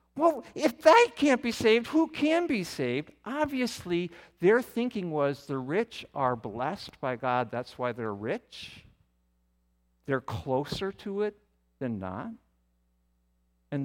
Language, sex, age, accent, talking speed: English, male, 50-69, American, 135 wpm